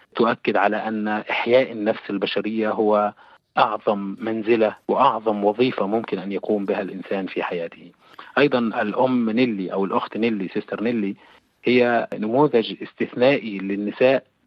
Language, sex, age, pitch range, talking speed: Arabic, male, 30-49, 105-125 Hz, 125 wpm